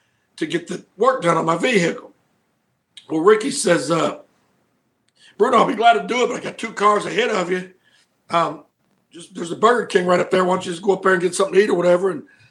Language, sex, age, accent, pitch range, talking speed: English, male, 60-79, American, 180-230 Hz, 250 wpm